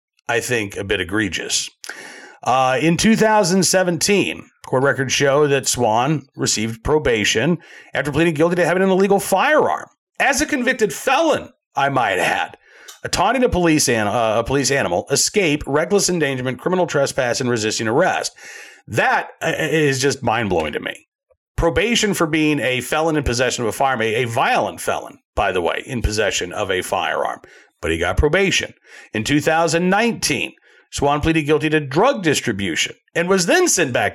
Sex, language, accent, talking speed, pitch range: male, English, American, 160 wpm, 135-180 Hz